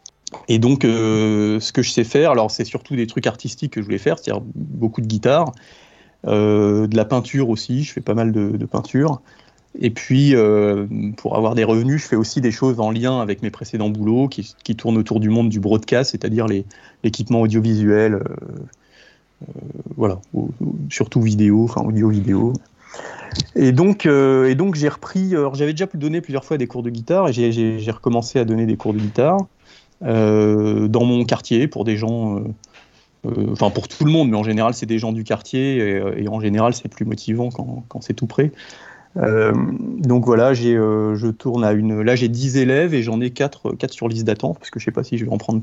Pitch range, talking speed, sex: 110-130 Hz, 220 wpm, male